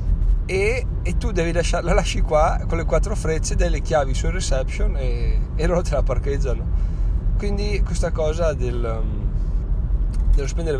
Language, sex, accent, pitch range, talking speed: Italian, male, native, 95-125 Hz, 150 wpm